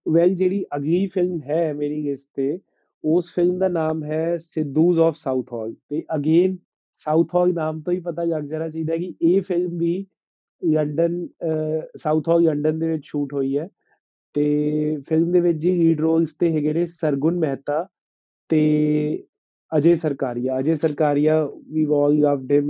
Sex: male